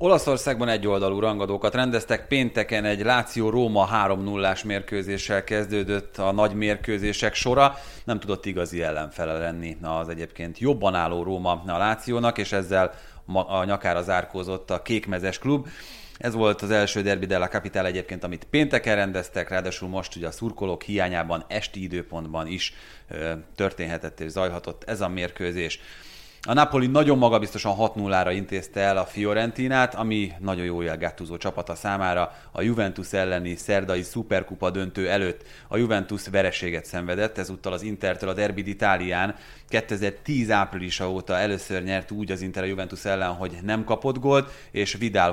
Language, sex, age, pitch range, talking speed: Hungarian, male, 30-49, 90-110 Hz, 145 wpm